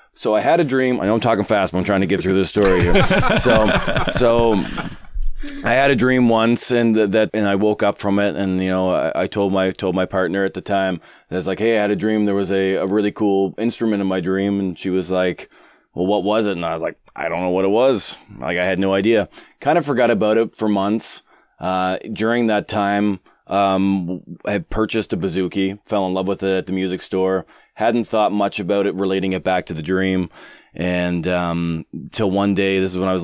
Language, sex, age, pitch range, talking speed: English, male, 20-39, 90-105 Hz, 240 wpm